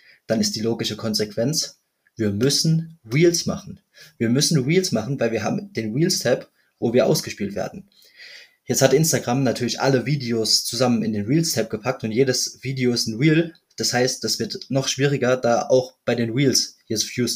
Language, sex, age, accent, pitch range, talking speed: German, male, 20-39, German, 115-145 Hz, 185 wpm